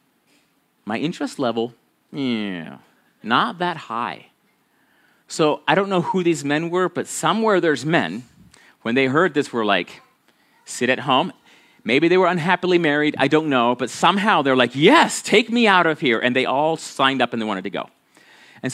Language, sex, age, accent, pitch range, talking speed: English, male, 30-49, American, 115-170 Hz, 185 wpm